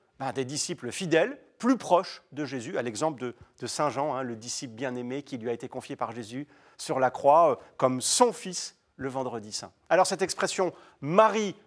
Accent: French